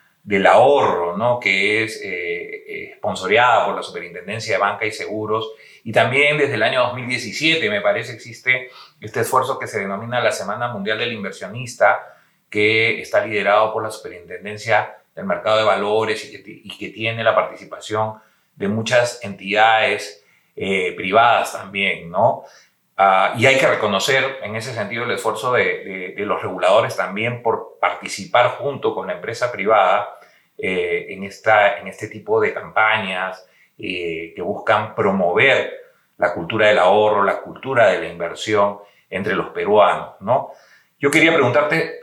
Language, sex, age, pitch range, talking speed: Spanish, male, 40-59, 105-145 Hz, 155 wpm